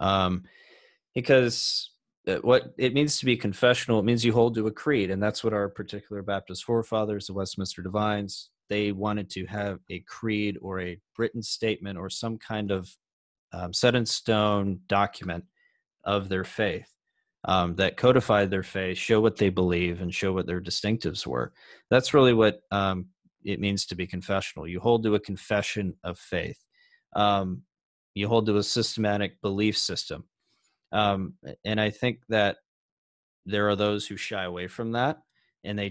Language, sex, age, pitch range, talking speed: English, male, 30-49, 95-110 Hz, 170 wpm